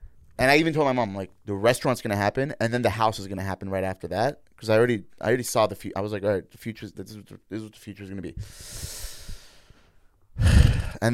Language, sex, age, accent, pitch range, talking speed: English, male, 30-49, American, 95-115 Hz, 255 wpm